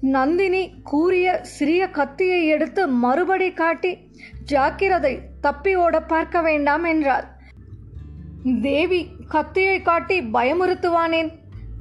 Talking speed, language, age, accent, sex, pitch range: 85 wpm, Tamil, 20-39, native, female, 300-360 Hz